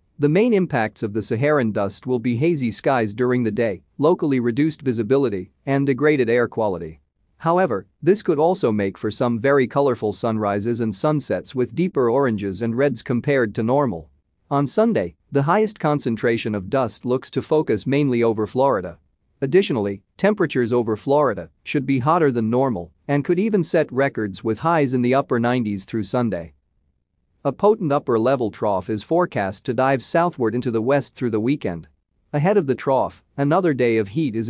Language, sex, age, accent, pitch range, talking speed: English, male, 40-59, American, 110-145 Hz, 175 wpm